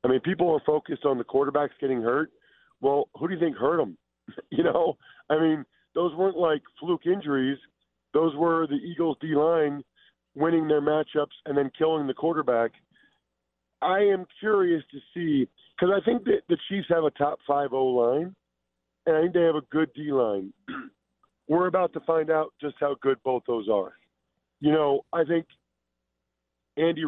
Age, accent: 40-59, American